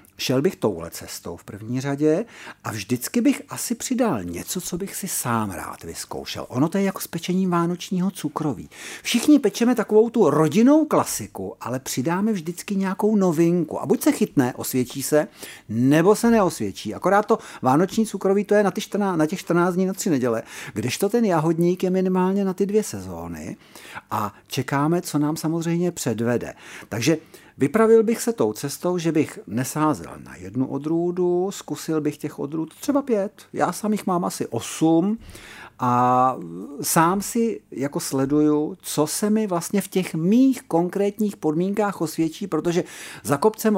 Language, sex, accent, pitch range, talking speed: Czech, male, native, 140-200 Hz, 165 wpm